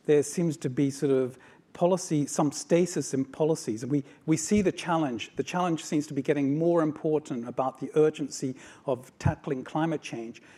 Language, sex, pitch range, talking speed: English, male, 130-155 Hz, 175 wpm